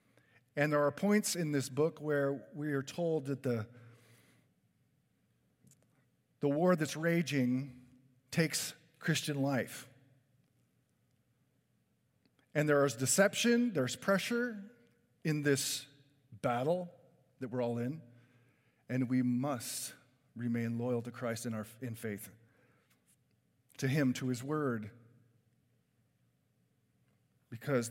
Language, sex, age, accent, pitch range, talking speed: English, male, 40-59, American, 115-145 Hz, 105 wpm